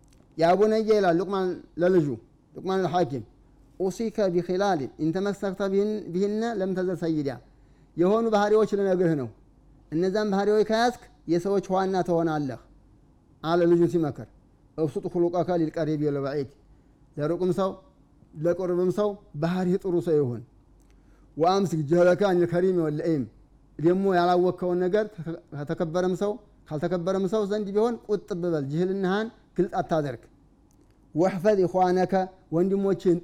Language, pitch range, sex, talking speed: Amharic, 160-195 Hz, male, 90 wpm